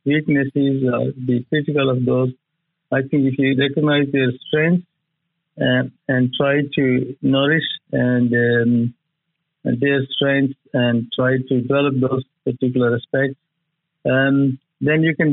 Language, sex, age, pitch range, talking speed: English, male, 50-69, 125-145 Hz, 125 wpm